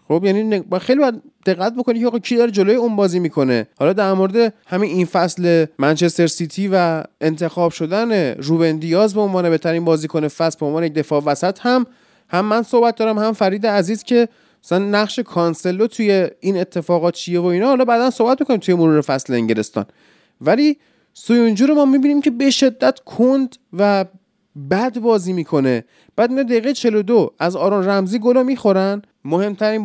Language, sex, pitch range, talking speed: Persian, male, 170-225 Hz, 170 wpm